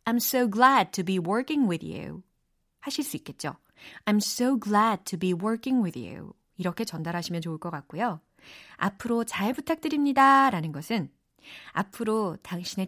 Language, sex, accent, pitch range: Korean, female, native, 180-260 Hz